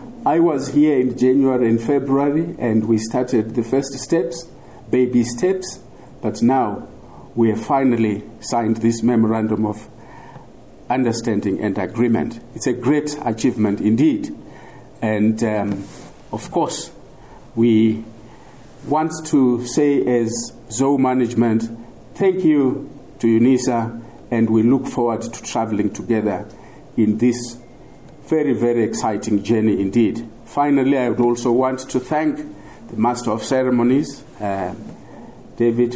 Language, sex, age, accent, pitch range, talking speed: English, male, 50-69, South African, 110-135 Hz, 125 wpm